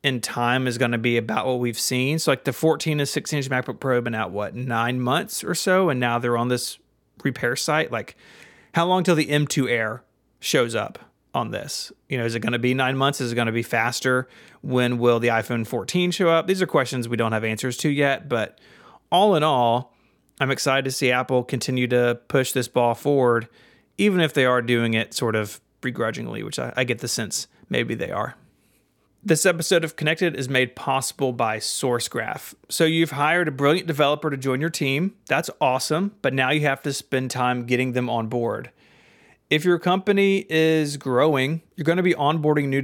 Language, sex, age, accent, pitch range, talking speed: English, male, 30-49, American, 120-155 Hz, 210 wpm